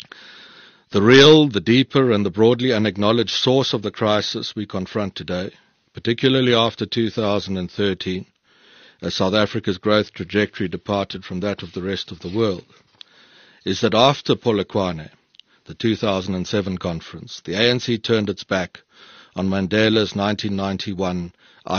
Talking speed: 130 wpm